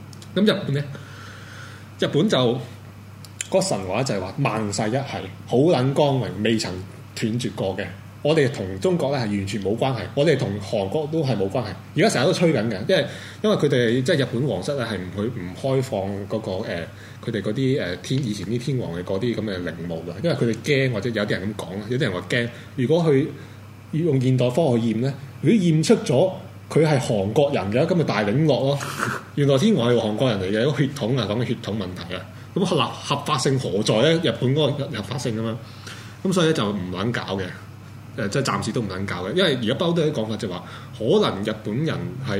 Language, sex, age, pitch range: Chinese, male, 20-39, 105-140 Hz